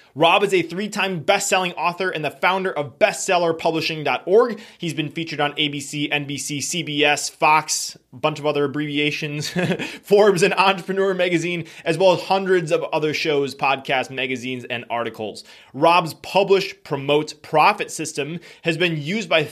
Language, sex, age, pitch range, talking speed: English, male, 20-39, 145-185 Hz, 150 wpm